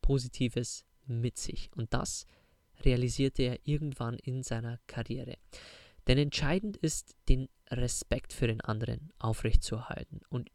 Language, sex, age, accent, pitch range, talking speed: German, male, 20-39, German, 115-135 Hz, 120 wpm